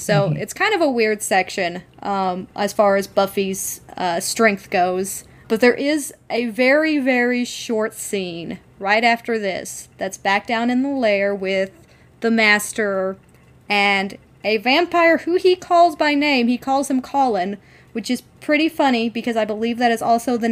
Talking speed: 170 wpm